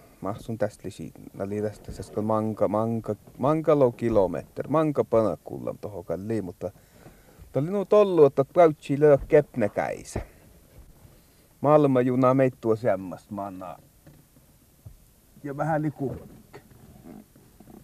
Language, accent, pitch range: Finnish, native, 105-150 Hz